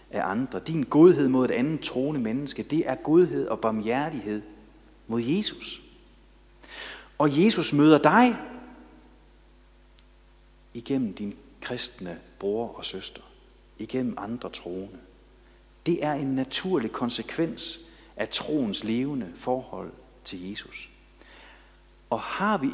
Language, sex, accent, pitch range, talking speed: Danish, male, native, 110-155 Hz, 115 wpm